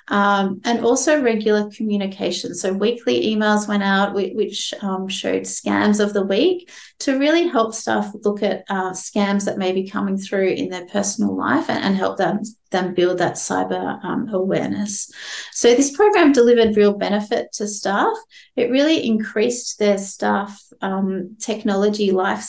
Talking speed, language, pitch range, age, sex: 165 wpm, English, 195-240 Hz, 30-49, female